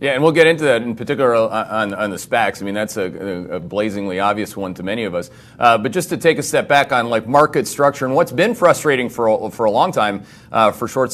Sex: male